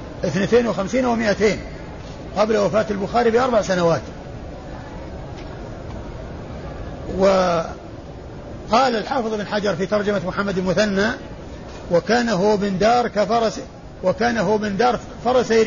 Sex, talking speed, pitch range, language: male, 90 wpm, 175-210 Hz, Arabic